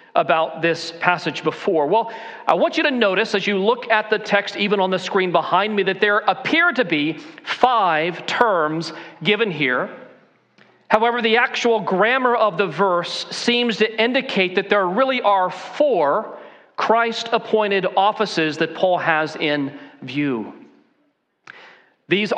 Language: English